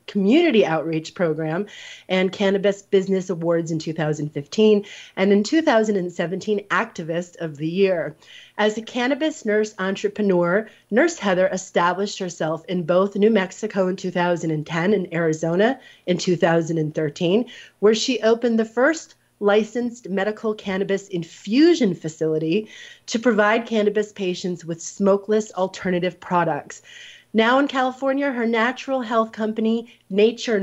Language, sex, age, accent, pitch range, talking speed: English, female, 30-49, American, 175-220 Hz, 120 wpm